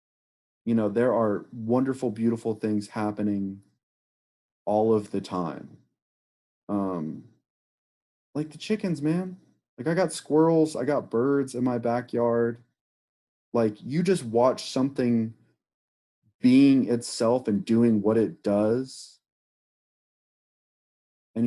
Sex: male